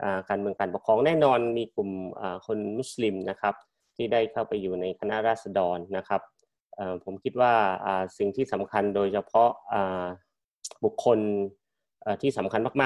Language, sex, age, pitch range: Thai, male, 30-49, 100-125 Hz